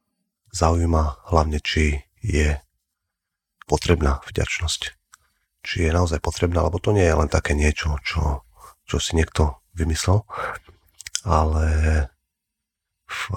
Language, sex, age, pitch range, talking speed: Slovak, male, 40-59, 80-90 Hz, 110 wpm